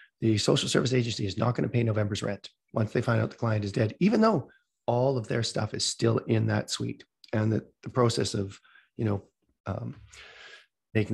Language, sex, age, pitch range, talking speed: English, male, 30-49, 110-130 Hz, 210 wpm